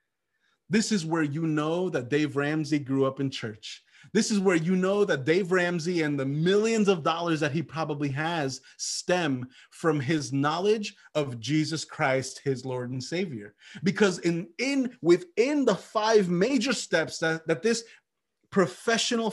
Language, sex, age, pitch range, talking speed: English, male, 30-49, 130-170 Hz, 160 wpm